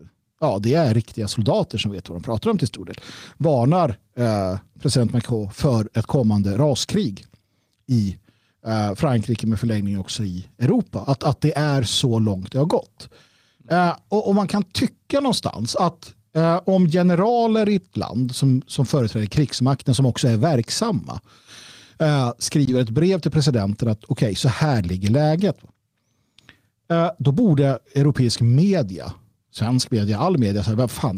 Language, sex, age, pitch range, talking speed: Swedish, male, 50-69, 110-155 Hz, 150 wpm